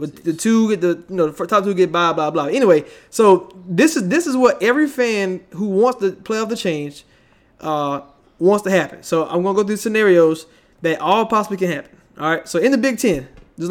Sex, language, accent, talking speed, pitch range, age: male, English, American, 240 wpm, 165-210 Hz, 20-39